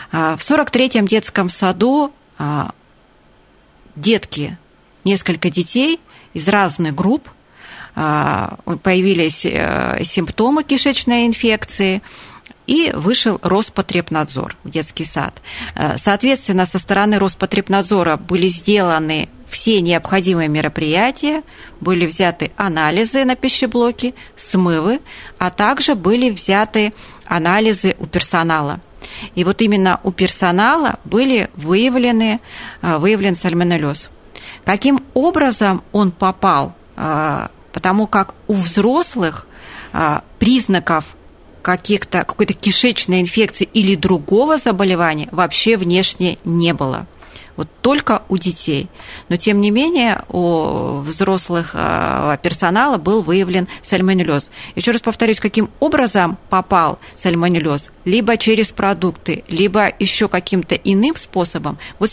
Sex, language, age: female, Russian, 30-49